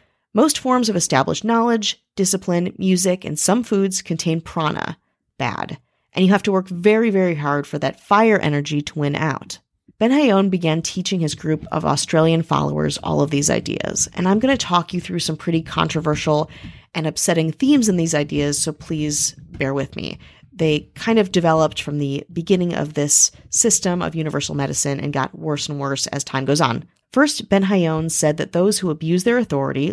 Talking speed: 190 wpm